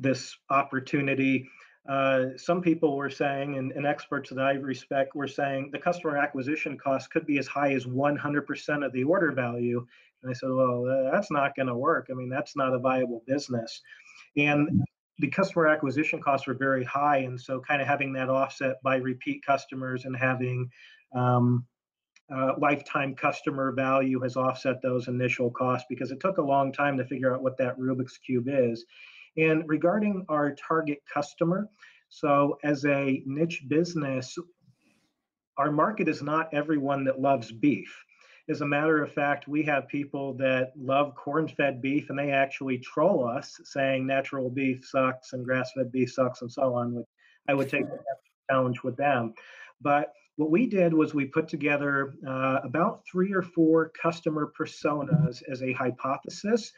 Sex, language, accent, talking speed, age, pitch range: male, English, American, 170 wpm, 40-59, 130-150 Hz